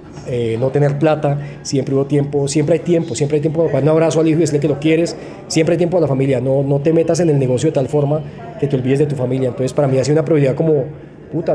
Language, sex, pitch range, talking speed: Spanish, male, 130-160 Hz, 275 wpm